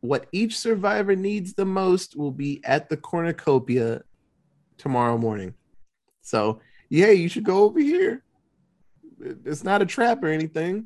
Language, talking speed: English, 145 wpm